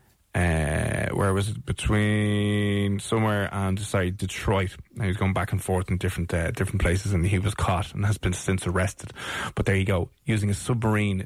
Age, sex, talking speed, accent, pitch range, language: 20-39, male, 195 wpm, Irish, 100-130 Hz, English